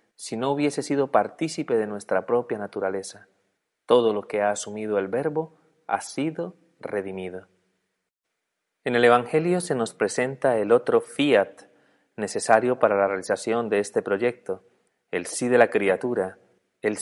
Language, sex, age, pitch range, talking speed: Spanish, male, 30-49, 100-140 Hz, 145 wpm